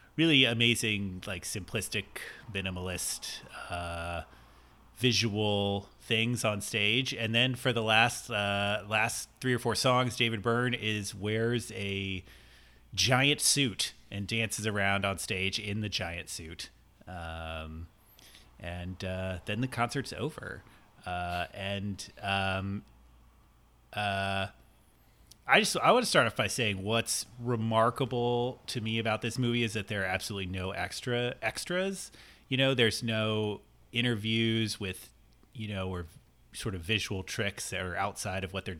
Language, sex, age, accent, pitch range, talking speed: English, male, 30-49, American, 95-115 Hz, 140 wpm